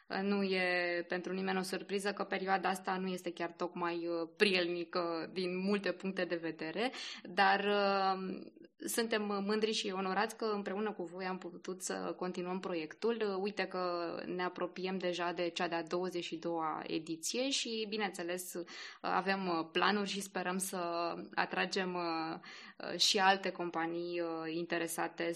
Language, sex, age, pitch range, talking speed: Romanian, female, 20-39, 175-215 Hz, 130 wpm